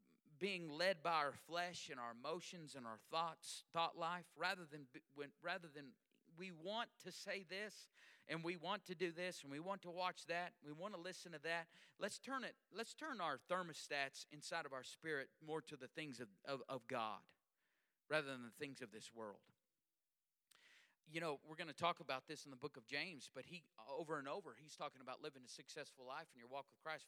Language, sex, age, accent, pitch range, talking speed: English, male, 40-59, American, 140-180 Hz, 215 wpm